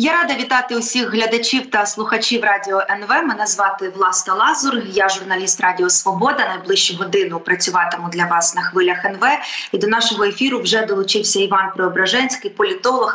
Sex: female